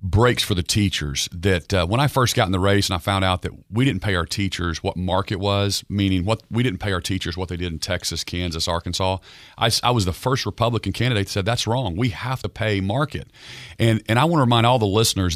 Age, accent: 40-59, American